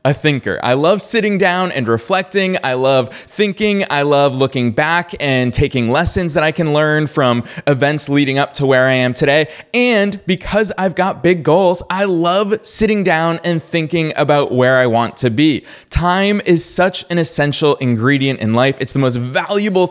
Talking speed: 185 wpm